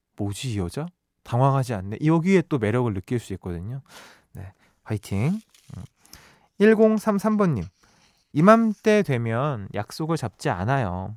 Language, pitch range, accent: Korean, 120-185 Hz, native